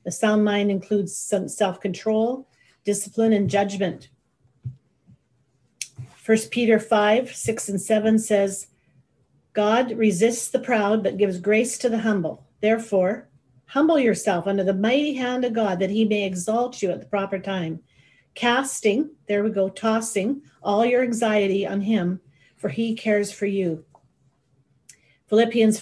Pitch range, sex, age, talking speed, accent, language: 190-230 Hz, female, 40-59, 140 wpm, American, English